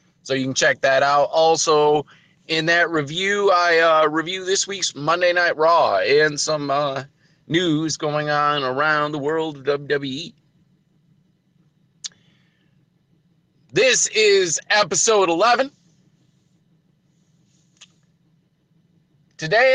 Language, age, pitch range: English, 40-59, 155-180 Hz